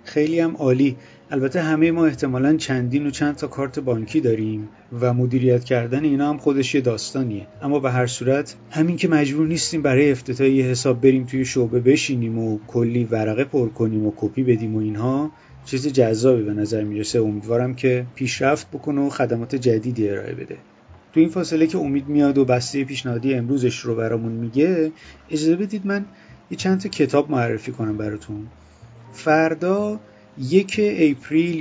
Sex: male